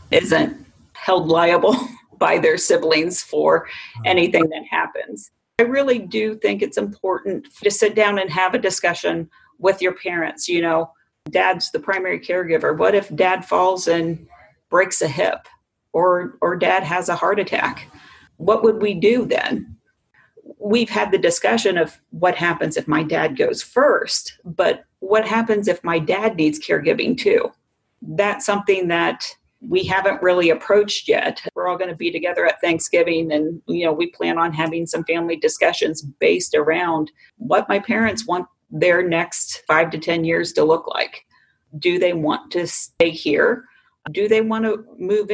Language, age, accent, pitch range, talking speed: English, 40-59, American, 170-220 Hz, 165 wpm